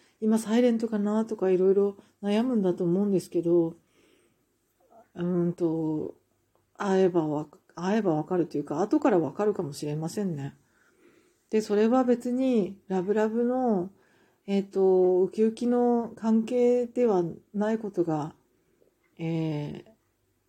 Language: Japanese